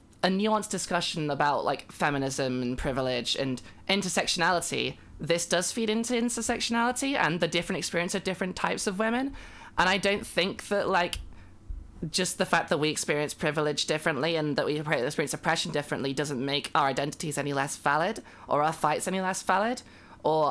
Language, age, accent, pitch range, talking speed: English, 20-39, British, 145-190 Hz, 170 wpm